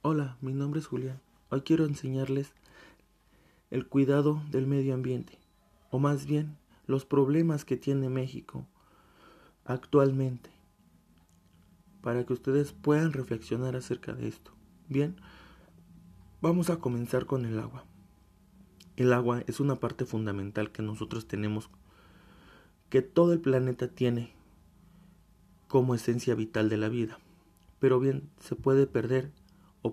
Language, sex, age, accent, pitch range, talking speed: English, male, 30-49, Mexican, 110-135 Hz, 125 wpm